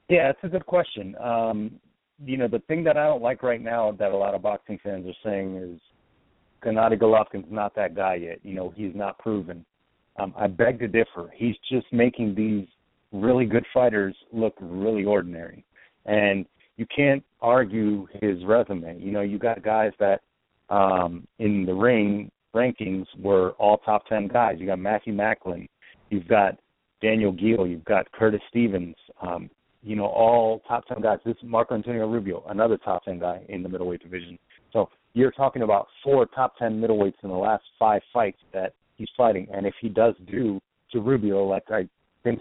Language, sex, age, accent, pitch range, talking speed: English, male, 40-59, American, 100-120 Hz, 185 wpm